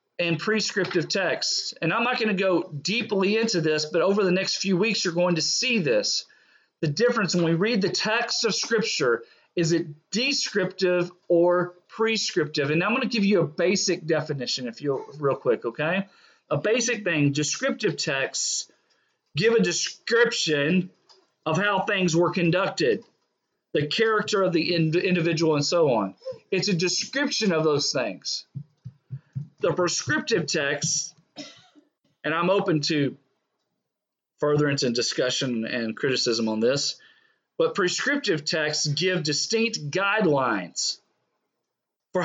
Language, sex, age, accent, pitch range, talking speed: English, male, 40-59, American, 155-220 Hz, 140 wpm